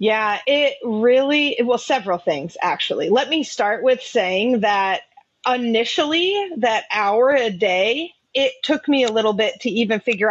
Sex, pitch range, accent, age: female, 200-245 Hz, American, 30-49